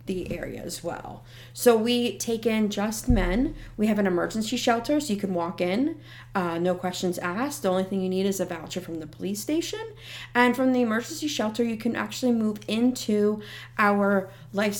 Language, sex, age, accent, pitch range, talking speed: English, female, 30-49, American, 180-230 Hz, 190 wpm